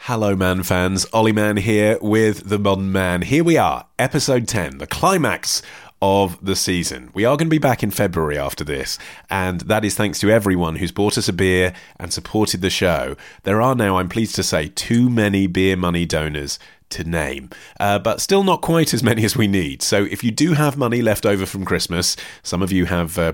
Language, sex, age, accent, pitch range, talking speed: English, male, 30-49, British, 90-120 Hz, 215 wpm